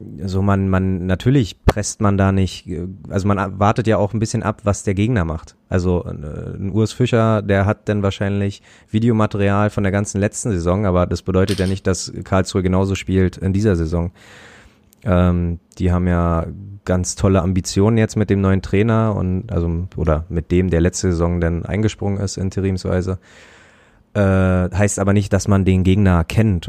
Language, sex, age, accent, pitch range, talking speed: German, male, 20-39, German, 85-100 Hz, 180 wpm